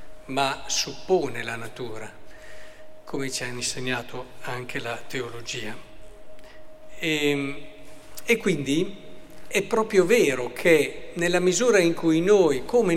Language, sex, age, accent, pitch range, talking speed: Italian, male, 50-69, native, 140-195 Hz, 110 wpm